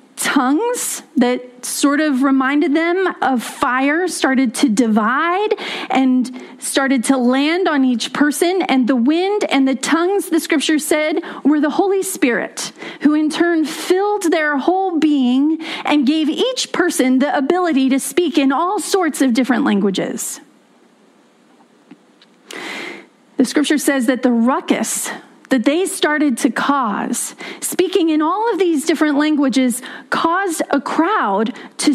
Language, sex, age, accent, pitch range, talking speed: English, female, 30-49, American, 270-355 Hz, 140 wpm